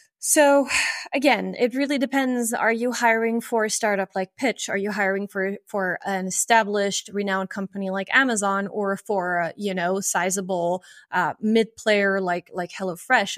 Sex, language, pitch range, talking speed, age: female, English, 190-235 Hz, 165 wpm, 20-39